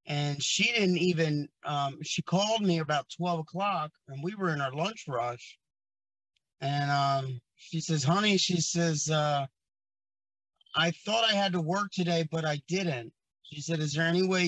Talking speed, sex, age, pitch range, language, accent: 175 wpm, male, 30-49, 150-180 Hz, English, American